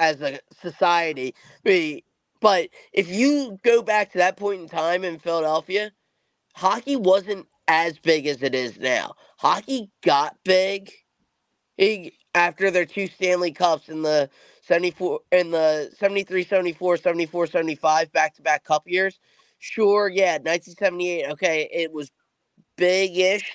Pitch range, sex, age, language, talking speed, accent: 165-200 Hz, male, 20-39, English, 135 wpm, American